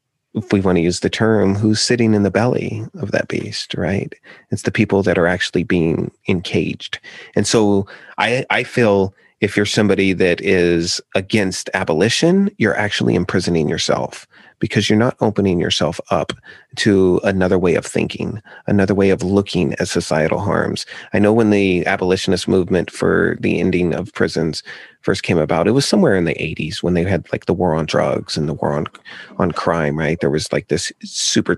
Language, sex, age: English, male, 30-49